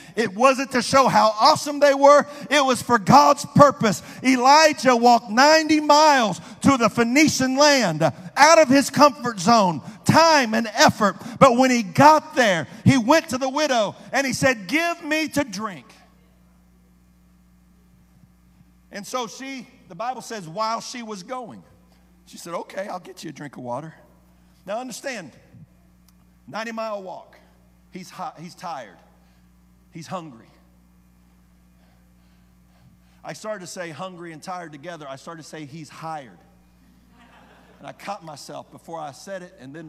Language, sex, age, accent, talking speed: English, male, 50-69, American, 150 wpm